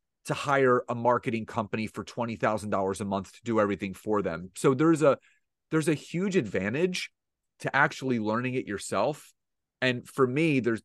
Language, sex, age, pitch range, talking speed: English, male, 30-49, 110-150 Hz, 175 wpm